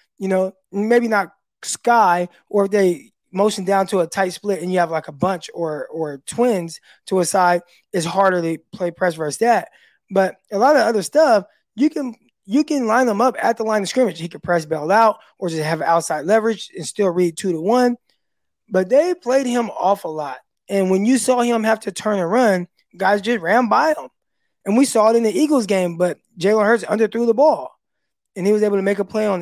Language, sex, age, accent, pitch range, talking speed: English, male, 20-39, American, 175-220 Hz, 230 wpm